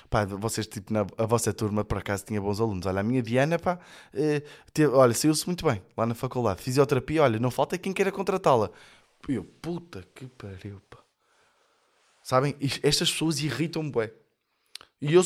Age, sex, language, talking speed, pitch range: 20-39, male, Portuguese, 170 wpm, 115-170 Hz